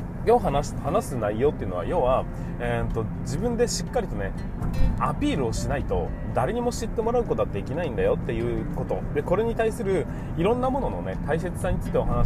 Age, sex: 20-39, male